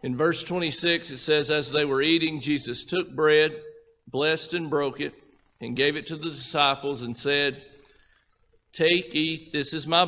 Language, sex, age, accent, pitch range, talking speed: English, male, 50-69, American, 125-155 Hz, 175 wpm